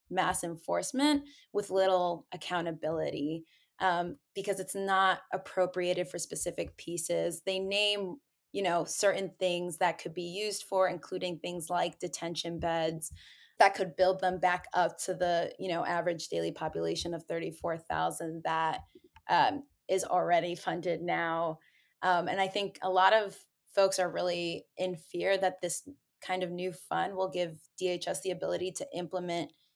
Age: 20-39